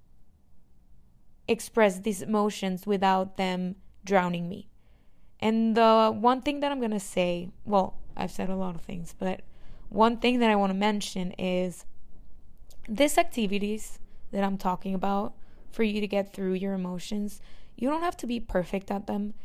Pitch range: 190-225 Hz